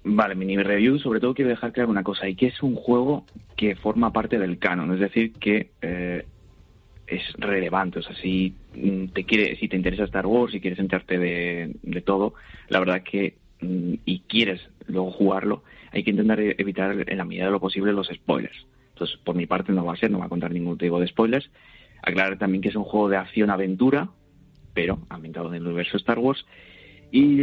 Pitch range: 90-105 Hz